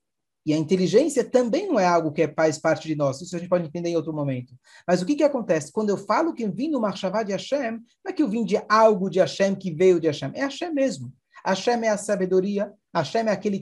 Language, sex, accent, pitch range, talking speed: Portuguese, male, Brazilian, 175-240 Hz, 255 wpm